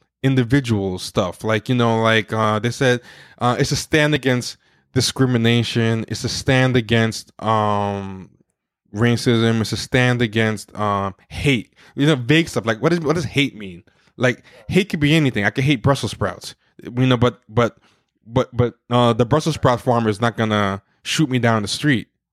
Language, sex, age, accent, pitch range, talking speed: English, male, 20-39, American, 110-140 Hz, 180 wpm